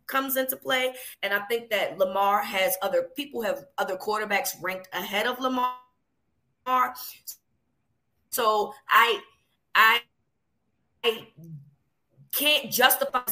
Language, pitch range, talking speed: English, 200-275 Hz, 110 wpm